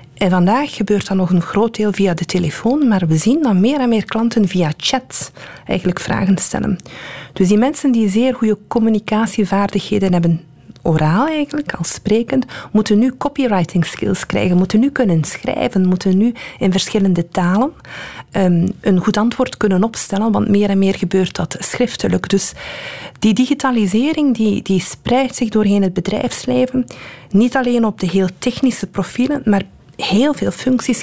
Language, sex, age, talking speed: Dutch, female, 40-59, 160 wpm